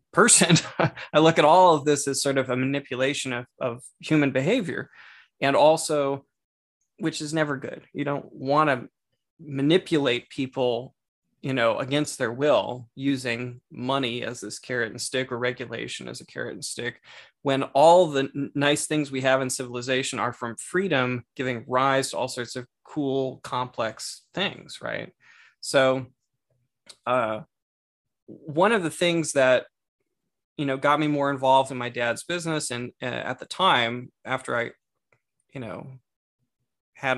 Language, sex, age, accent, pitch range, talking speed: English, male, 20-39, American, 125-150 Hz, 155 wpm